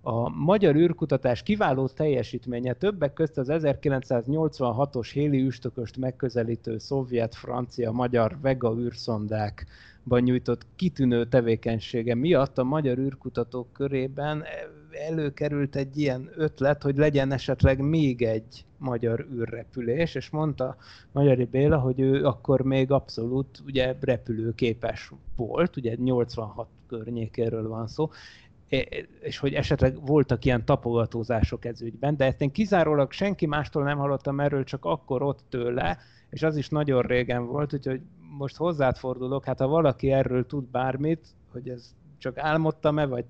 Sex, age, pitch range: male, 30-49, 120-145 Hz